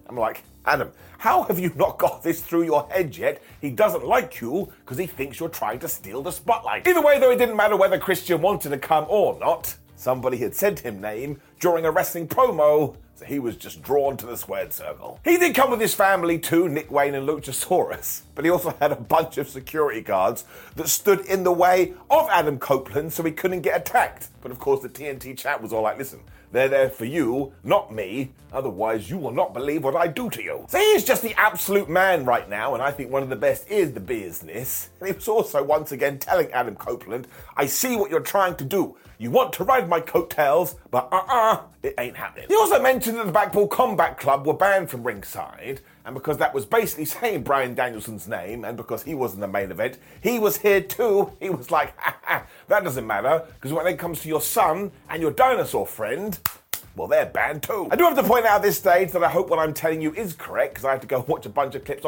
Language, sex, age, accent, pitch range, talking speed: English, male, 30-49, British, 140-210 Hz, 240 wpm